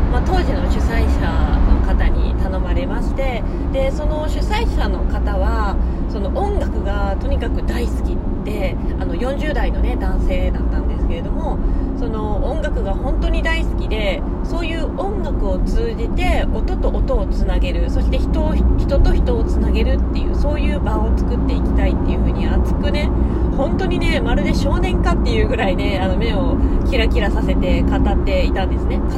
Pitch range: 70-90 Hz